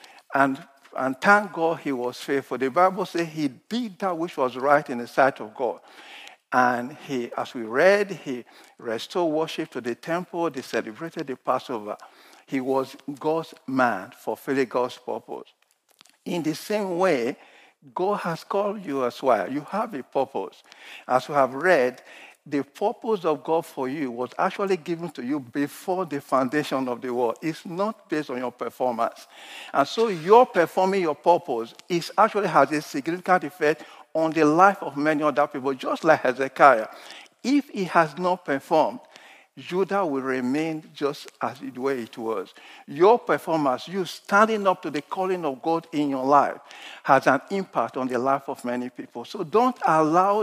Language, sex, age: English, male, 50-69